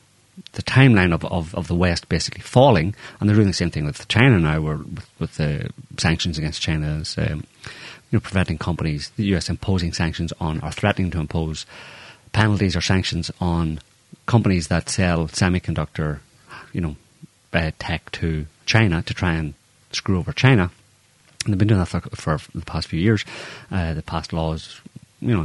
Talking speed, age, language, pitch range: 180 wpm, 30-49, English, 80-110 Hz